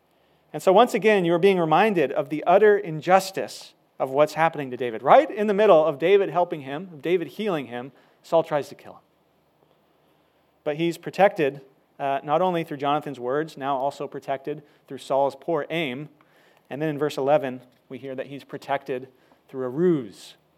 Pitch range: 135-165 Hz